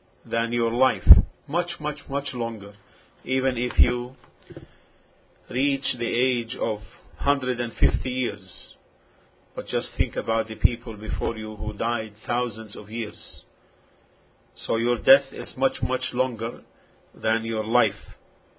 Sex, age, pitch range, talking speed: male, 50-69, 115-135 Hz, 125 wpm